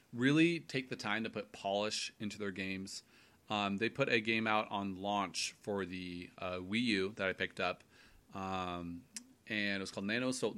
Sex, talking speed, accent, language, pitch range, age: male, 195 wpm, American, English, 95-120 Hz, 30-49